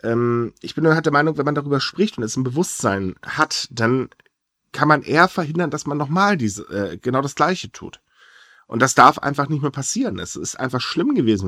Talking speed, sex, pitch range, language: 200 wpm, male, 120-150 Hz, German